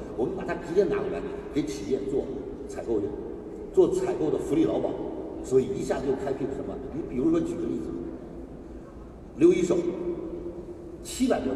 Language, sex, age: Chinese, male, 50-69